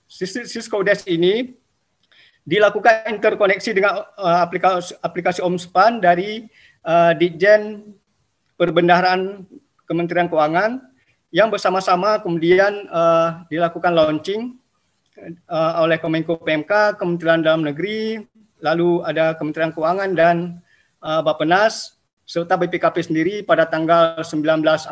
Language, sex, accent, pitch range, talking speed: Indonesian, male, native, 160-195 Hz, 100 wpm